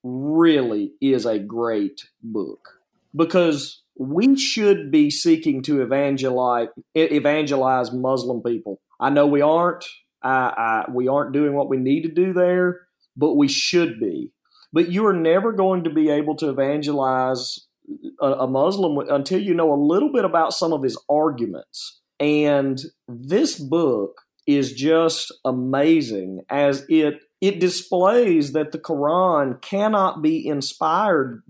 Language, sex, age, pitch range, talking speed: English, male, 40-59, 135-180 Hz, 140 wpm